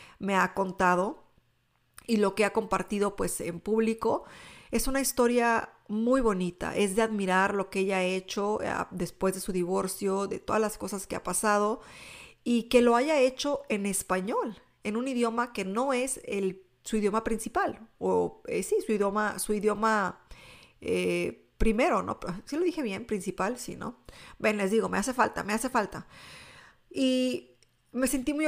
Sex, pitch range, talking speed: female, 190-230 Hz, 175 wpm